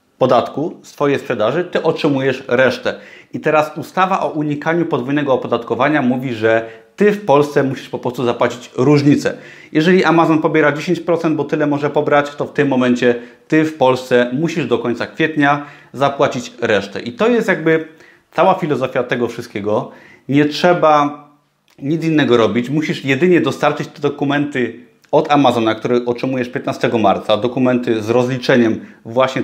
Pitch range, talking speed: 125-160 Hz, 145 wpm